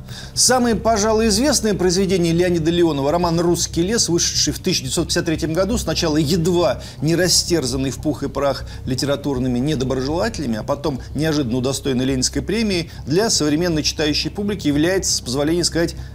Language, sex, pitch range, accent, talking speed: Russian, male, 145-205 Hz, native, 140 wpm